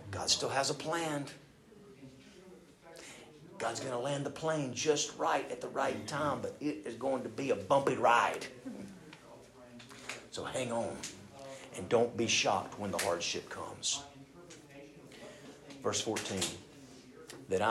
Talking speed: 135 wpm